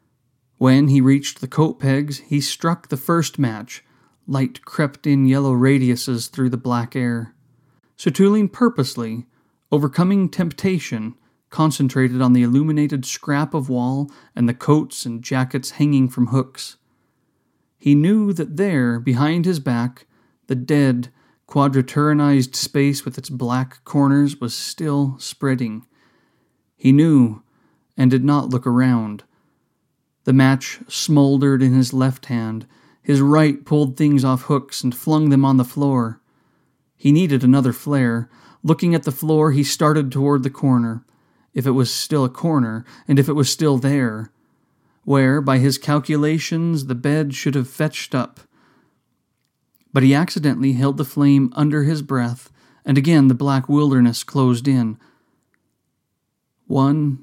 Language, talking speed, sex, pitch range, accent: English, 140 wpm, male, 130-145 Hz, American